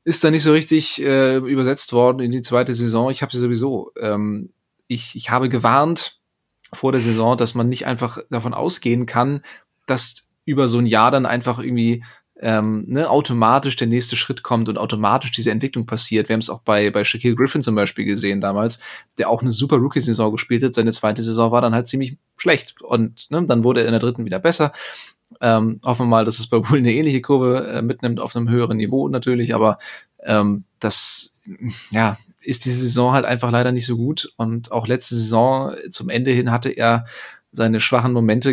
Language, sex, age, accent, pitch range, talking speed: German, male, 20-39, German, 115-130 Hz, 205 wpm